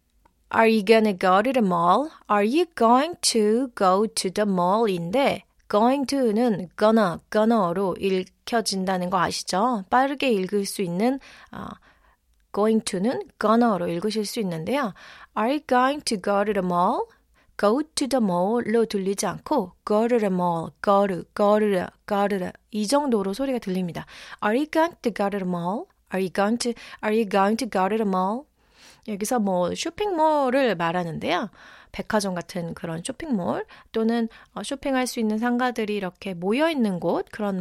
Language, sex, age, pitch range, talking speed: English, female, 30-49, 195-250 Hz, 160 wpm